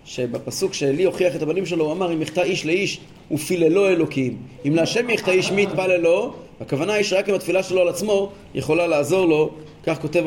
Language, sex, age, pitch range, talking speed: Hebrew, male, 30-49, 140-185 Hz, 200 wpm